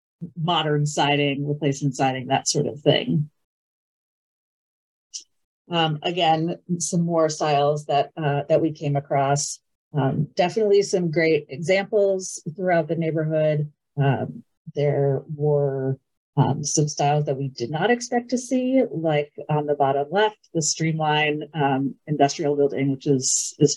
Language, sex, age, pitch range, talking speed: English, female, 40-59, 140-160 Hz, 130 wpm